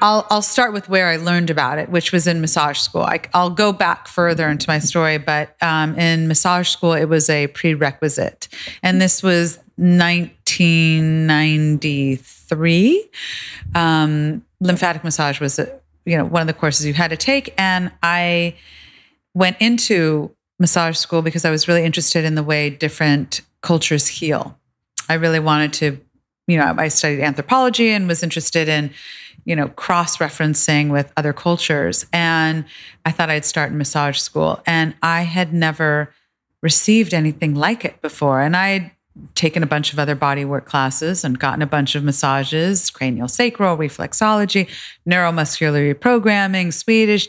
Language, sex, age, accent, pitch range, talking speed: English, female, 30-49, American, 150-180 Hz, 160 wpm